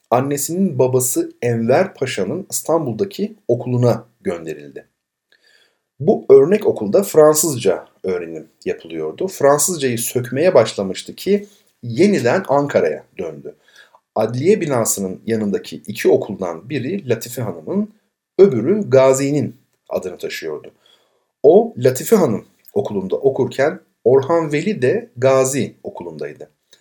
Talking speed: 95 wpm